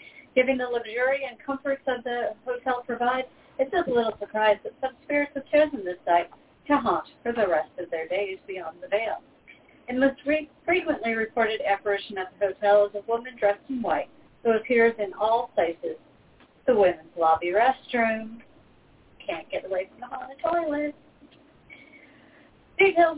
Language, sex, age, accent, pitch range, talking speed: English, female, 40-59, American, 205-275 Hz, 165 wpm